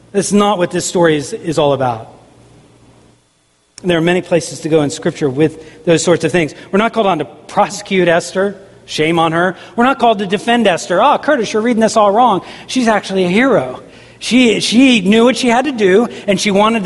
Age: 40-59